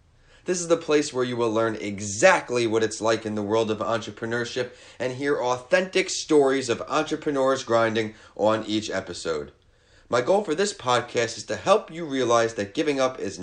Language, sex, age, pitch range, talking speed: English, male, 30-49, 105-150 Hz, 185 wpm